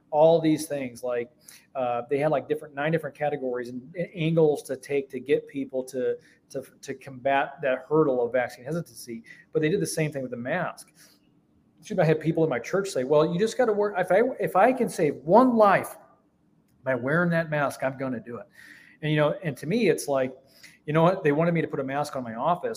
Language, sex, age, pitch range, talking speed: English, male, 30-49, 130-160 Hz, 230 wpm